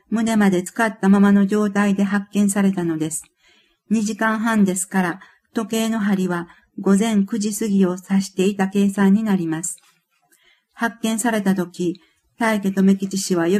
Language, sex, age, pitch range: Japanese, female, 50-69, 185-220 Hz